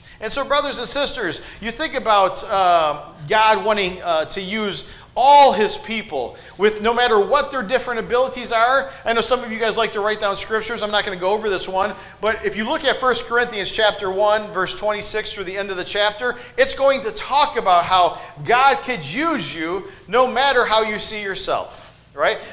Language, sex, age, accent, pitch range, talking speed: English, male, 40-59, American, 205-275 Hz, 210 wpm